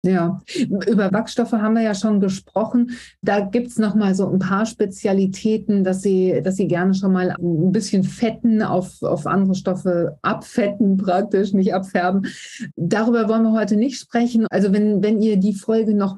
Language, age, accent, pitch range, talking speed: German, 40-59, German, 180-215 Hz, 180 wpm